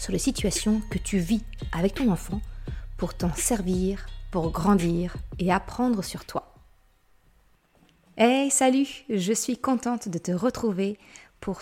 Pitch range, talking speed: 185-240 Hz, 140 wpm